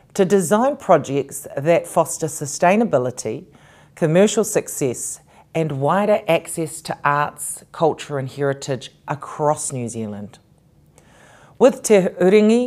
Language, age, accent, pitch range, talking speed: English, 40-59, Australian, 145-185 Hz, 105 wpm